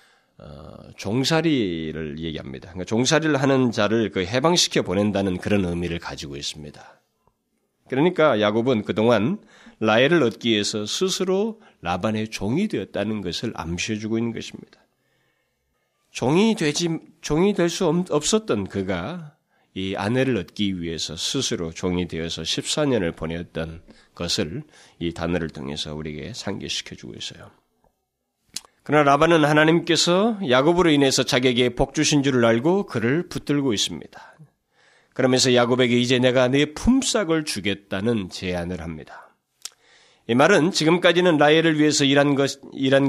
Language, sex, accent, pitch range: Korean, male, native, 100-160 Hz